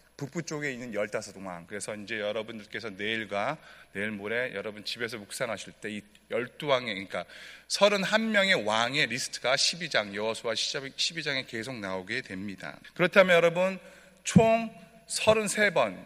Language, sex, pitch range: Korean, male, 125-200 Hz